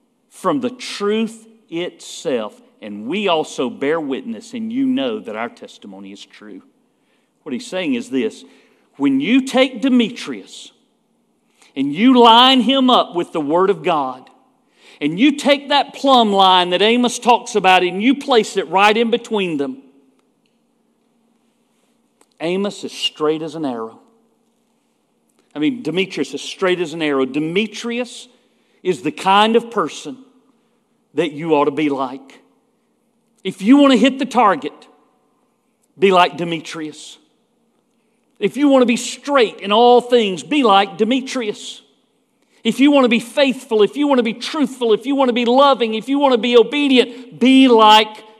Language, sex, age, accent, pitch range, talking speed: English, male, 50-69, American, 195-250 Hz, 160 wpm